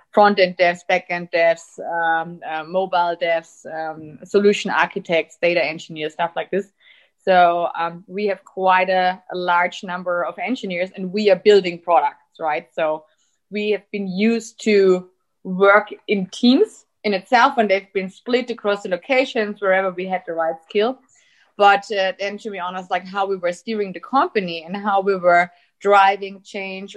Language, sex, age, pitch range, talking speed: English, female, 20-39, 170-195 Hz, 170 wpm